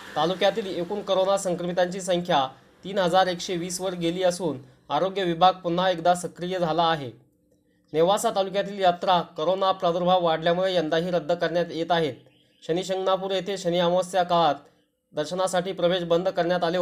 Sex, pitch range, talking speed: male, 165-185 Hz, 130 wpm